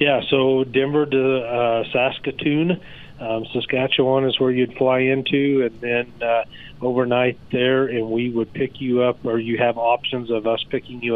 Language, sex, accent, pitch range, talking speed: English, male, American, 110-125 Hz, 170 wpm